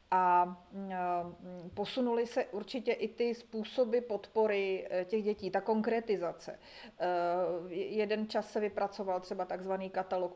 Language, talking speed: Czech, 110 wpm